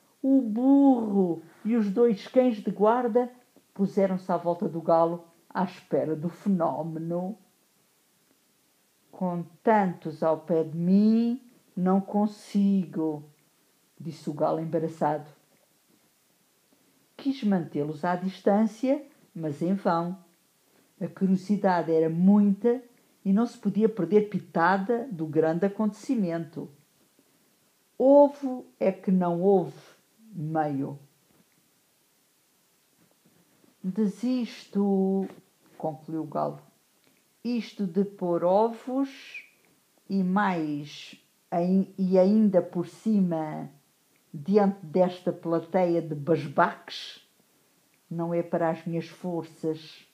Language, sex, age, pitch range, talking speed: English, female, 50-69, 165-215 Hz, 95 wpm